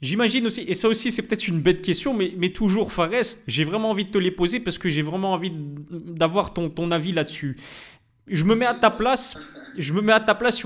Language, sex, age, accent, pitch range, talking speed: French, male, 20-39, French, 155-205 Hz, 255 wpm